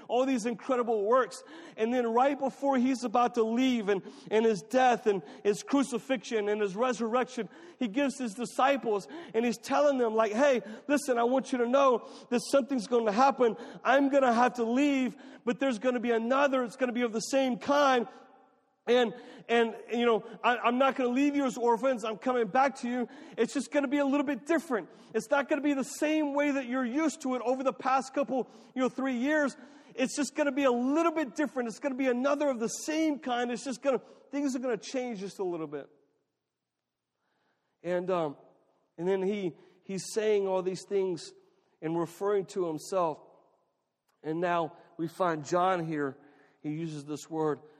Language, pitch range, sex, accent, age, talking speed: English, 180-265 Hz, male, American, 40-59, 205 wpm